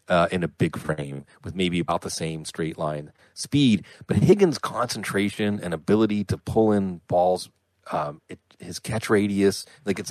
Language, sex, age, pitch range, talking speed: English, male, 30-49, 90-125 Hz, 170 wpm